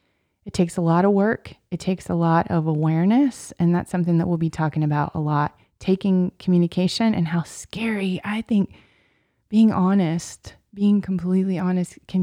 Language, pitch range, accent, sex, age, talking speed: English, 165-195 Hz, American, female, 20-39, 170 wpm